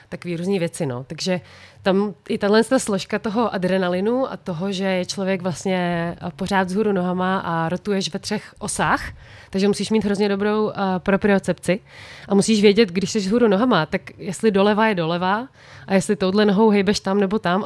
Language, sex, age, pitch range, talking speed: Czech, female, 20-39, 180-205 Hz, 180 wpm